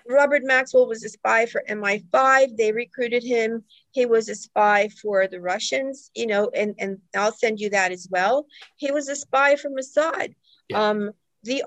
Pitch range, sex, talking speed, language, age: 195-250 Hz, female, 175 wpm, English, 50-69